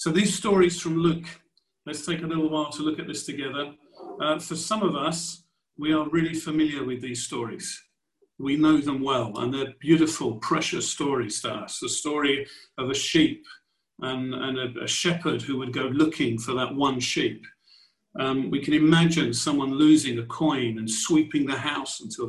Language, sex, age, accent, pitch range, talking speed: English, male, 50-69, British, 135-175 Hz, 185 wpm